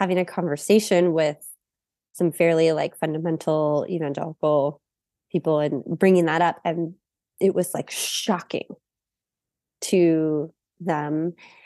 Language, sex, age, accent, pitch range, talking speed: English, female, 20-39, American, 170-215 Hz, 110 wpm